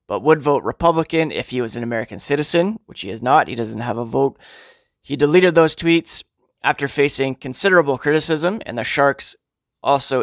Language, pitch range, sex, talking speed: English, 120-155 Hz, male, 180 wpm